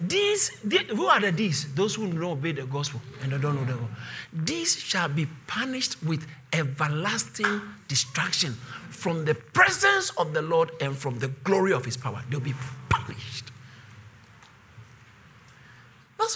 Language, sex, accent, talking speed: English, male, Nigerian, 155 wpm